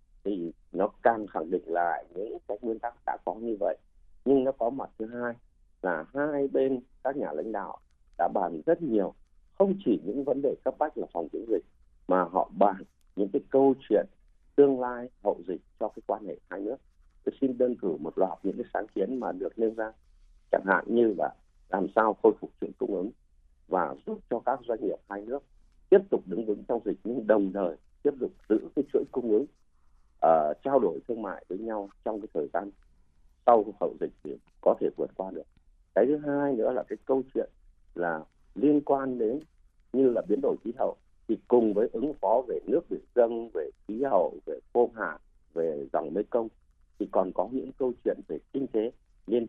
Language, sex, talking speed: Vietnamese, male, 210 wpm